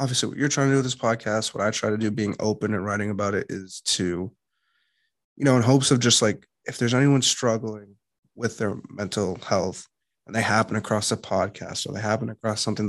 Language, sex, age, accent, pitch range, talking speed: English, male, 20-39, American, 100-115 Hz, 225 wpm